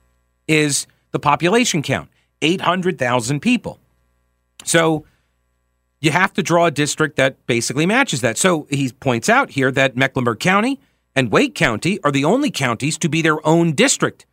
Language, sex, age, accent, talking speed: English, male, 40-59, American, 155 wpm